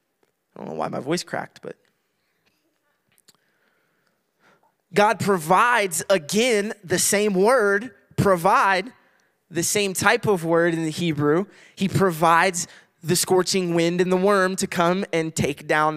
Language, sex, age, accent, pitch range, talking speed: English, male, 20-39, American, 160-195 Hz, 135 wpm